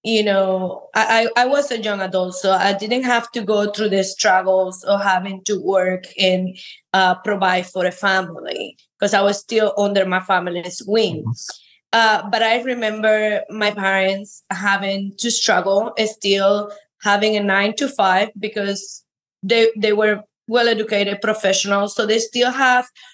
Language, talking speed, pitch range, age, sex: English, 155 wpm, 195-230 Hz, 20-39, female